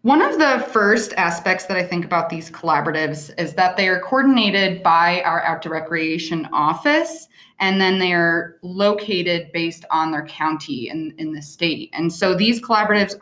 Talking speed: 175 wpm